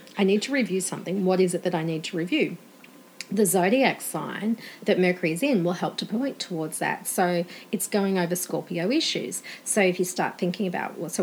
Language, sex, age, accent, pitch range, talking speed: English, female, 40-59, Australian, 180-230 Hz, 210 wpm